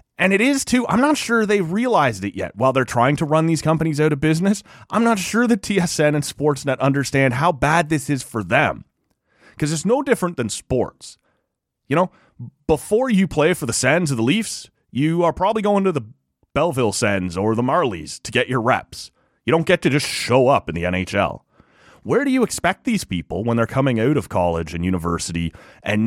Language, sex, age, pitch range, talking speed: English, male, 30-49, 95-150 Hz, 210 wpm